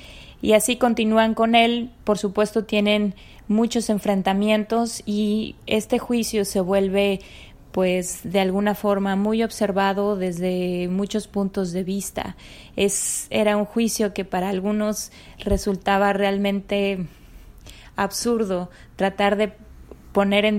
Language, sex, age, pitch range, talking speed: Spanish, female, 20-39, 185-210 Hz, 115 wpm